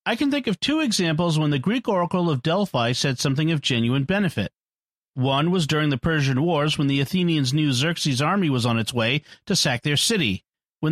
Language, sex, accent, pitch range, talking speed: English, male, American, 145-185 Hz, 210 wpm